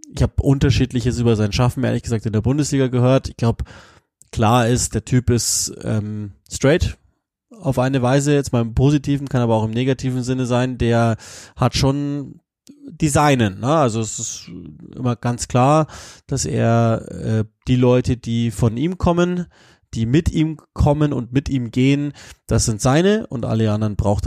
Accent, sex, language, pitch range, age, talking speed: German, male, German, 110-130 Hz, 20-39, 175 wpm